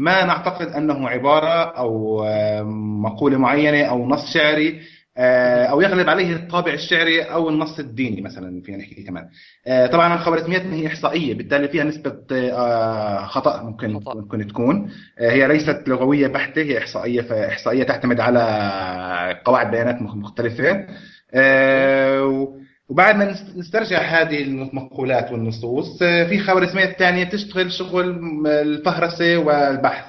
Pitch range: 120-165 Hz